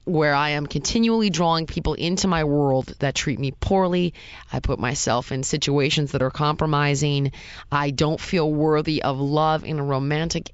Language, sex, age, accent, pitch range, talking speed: English, female, 20-39, American, 140-175 Hz, 170 wpm